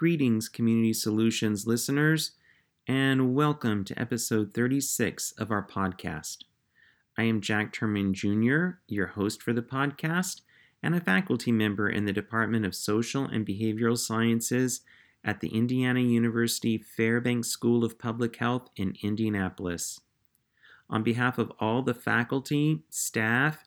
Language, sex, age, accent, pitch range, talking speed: English, male, 30-49, American, 105-135 Hz, 130 wpm